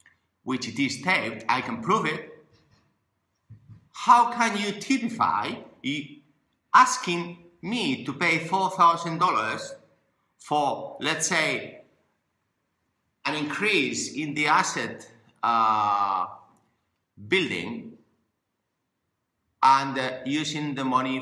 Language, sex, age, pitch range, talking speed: English, male, 50-69, 115-170 Hz, 90 wpm